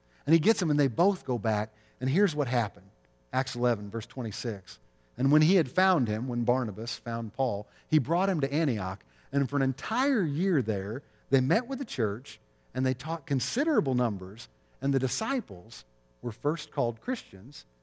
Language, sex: English, male